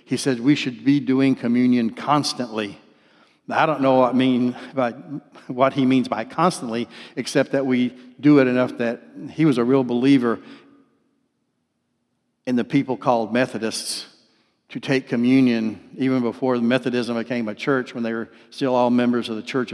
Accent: American